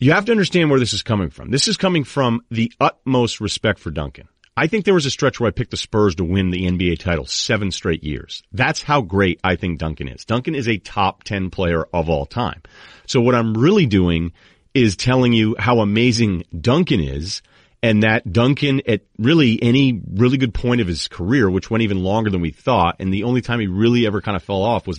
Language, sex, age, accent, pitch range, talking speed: English, male, 40-59, American, 95-135 Hz, 230 wpm